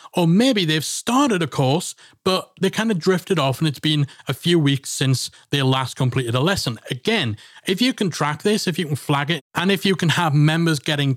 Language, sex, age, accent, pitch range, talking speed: English, male, 40-59, British, 135-170 Hz, 225 wpm